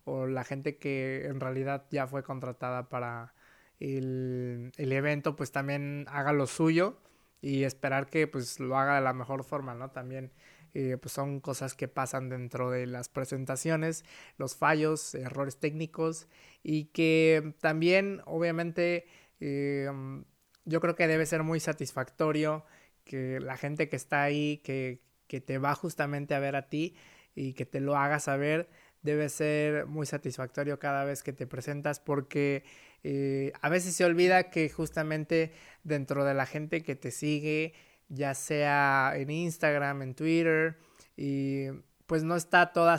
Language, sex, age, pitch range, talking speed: Spanish, male, 20-39, 135-155 Hz, 155 wpm